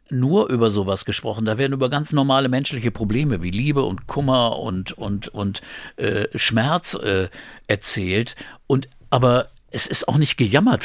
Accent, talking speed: German, 160 wpm